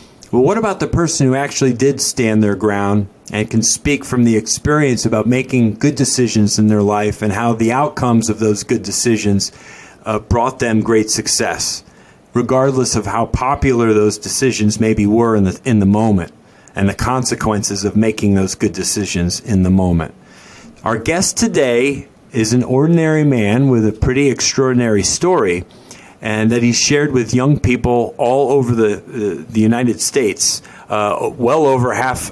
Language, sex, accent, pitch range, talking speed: English, male, American, 105-130 Hz, 165 wpm